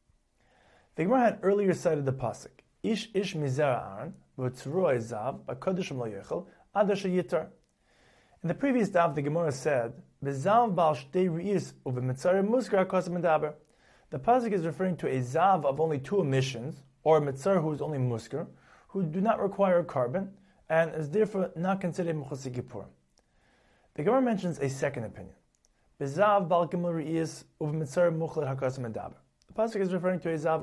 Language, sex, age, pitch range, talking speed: English, male, 30-49, 135-185 Hz, 120 wpm